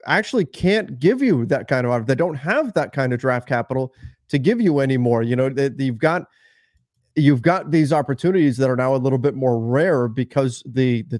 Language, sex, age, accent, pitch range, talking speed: English, male, 30-49, American, 130-175 Hz, 210 wpm